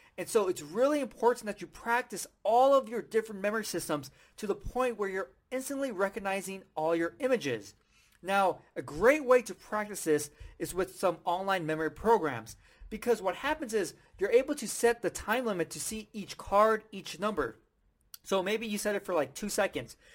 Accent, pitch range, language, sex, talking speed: American, 185-240 Hz, English, male, 190 wpm